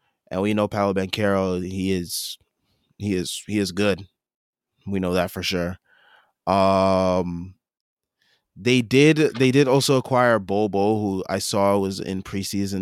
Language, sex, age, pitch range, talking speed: English, male, 20-39, 95-120 Hz, 145 wpm